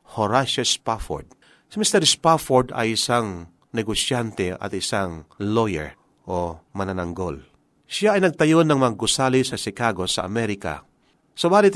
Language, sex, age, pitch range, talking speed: Filipino, male, 40-59, 110-160 Hz, 120 wpm